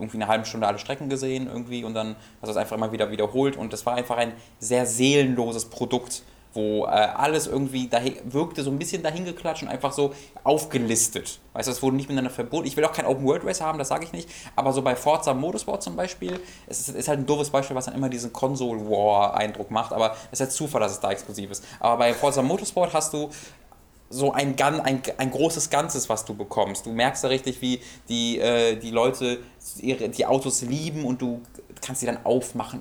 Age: 20-39